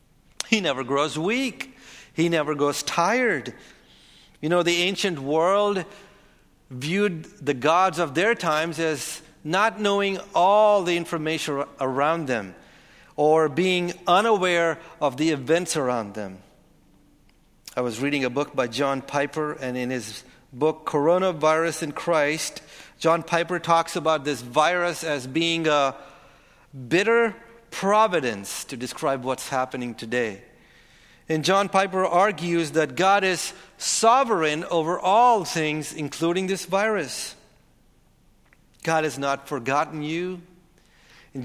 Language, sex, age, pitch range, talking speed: English, male, 40-59, 140-180 Hz, 125 wpm